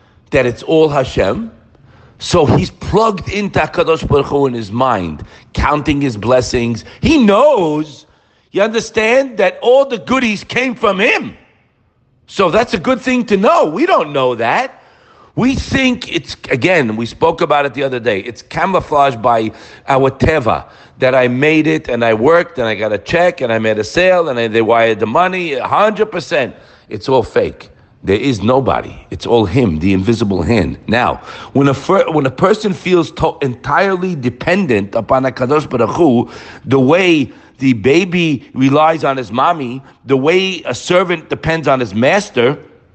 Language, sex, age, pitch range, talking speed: English, male, 50-69, 125-190 Hz, 170 wpm